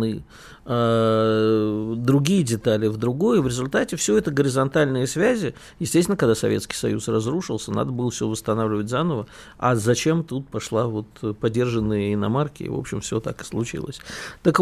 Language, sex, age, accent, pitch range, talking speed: Russian, male, 50-69, native, 115-160 Hz, 140 wpm